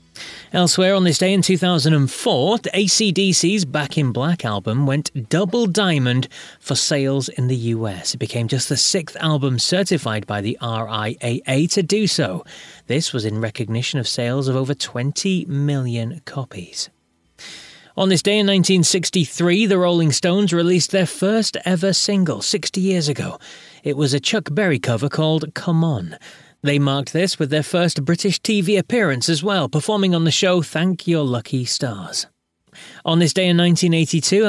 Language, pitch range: English, 135-185 Hz